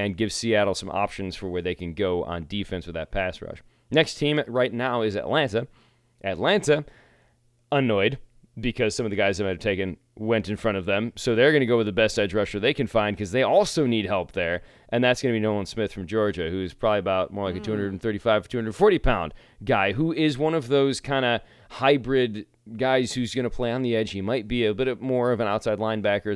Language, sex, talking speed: English, male, 230 wpm